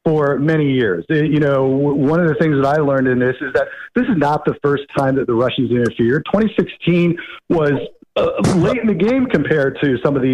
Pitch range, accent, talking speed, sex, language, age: 140-185 Hz, American, 220 wpm, male, English, 50-69